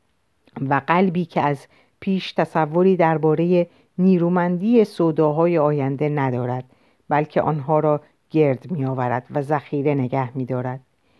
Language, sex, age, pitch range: Persian, female, 50-69, 145-195 Hz